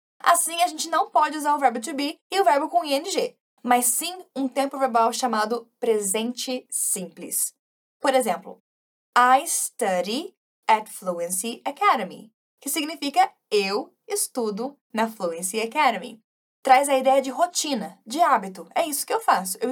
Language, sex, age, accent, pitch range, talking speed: Portuguese, female, 10-29, Brazilian, 225-310 Hz, 150 wpm